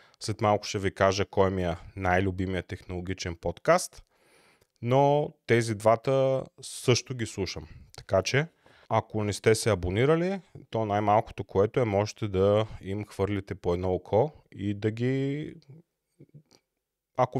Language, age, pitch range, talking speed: Bulgarian, 30-49, 95-120 Hz, 135 wpm